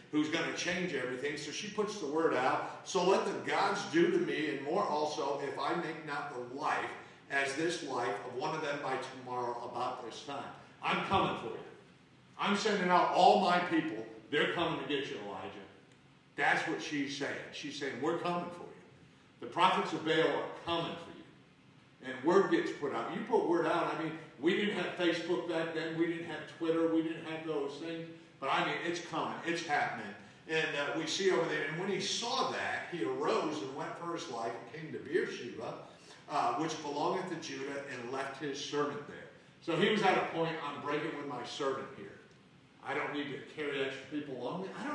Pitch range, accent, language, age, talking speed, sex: 145-175 Hz, American, English, 50-69, 215 wpm, male